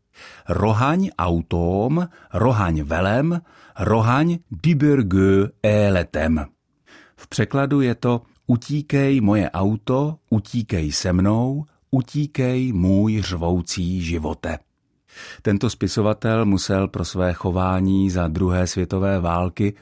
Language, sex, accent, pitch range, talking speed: Czech, male, native, 90-120 Hz, 95 wpm